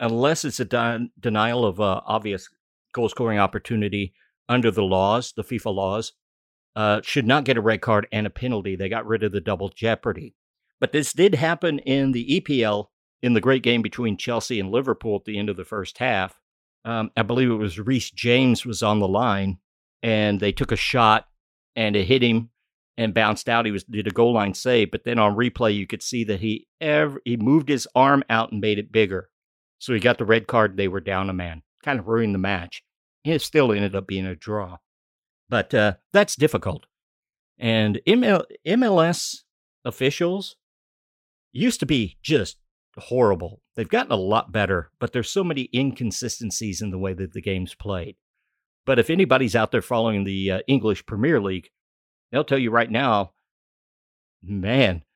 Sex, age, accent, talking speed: male, 50-69, American, 185 wpm